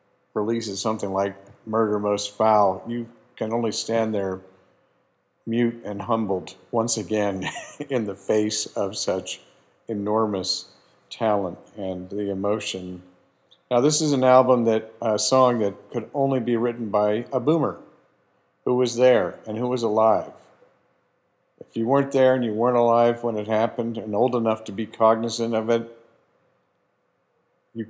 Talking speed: 150 wpm